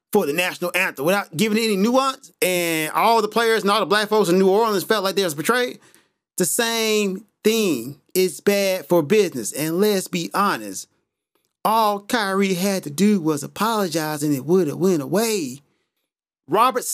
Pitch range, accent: 190-280 Hz, American